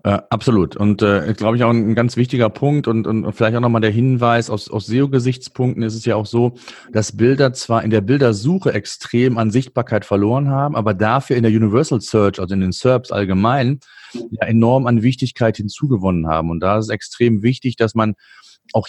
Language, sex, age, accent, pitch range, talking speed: German, male, 30-49, German, 110-130 Hz, 200 wpm